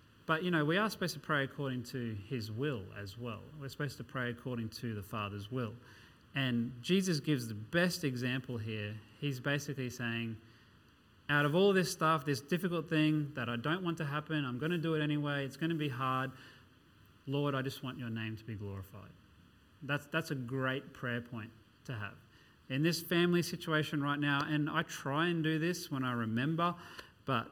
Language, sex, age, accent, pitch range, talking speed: English, male, 30-49, Australian, 120-150 Hz, 200 wpm